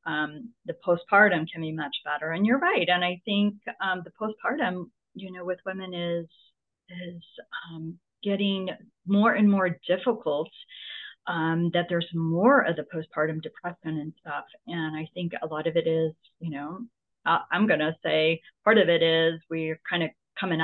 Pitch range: 165-220 Hz